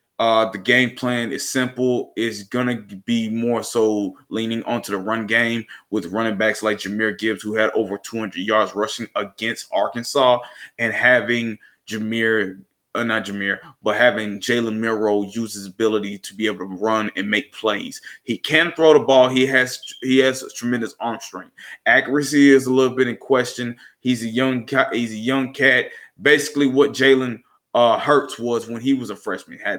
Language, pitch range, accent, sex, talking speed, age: English, 110-130 Hz, American, male, 190 wpm, 20-39